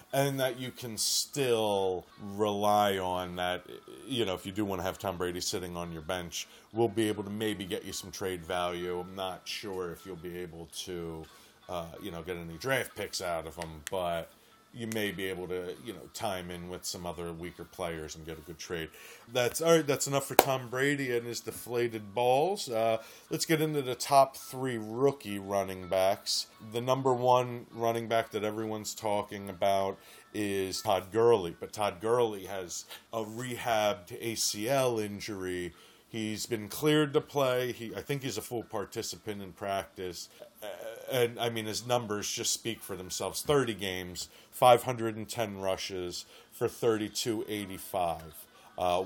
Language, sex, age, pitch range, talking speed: English, male, 30-49, 95-120 Hz, 175 wpm